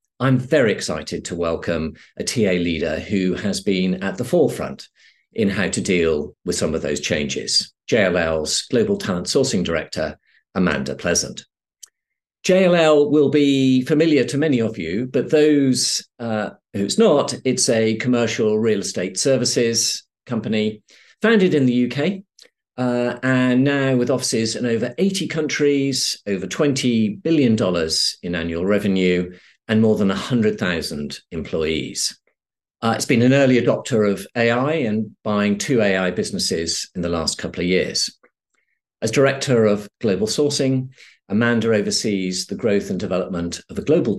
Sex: male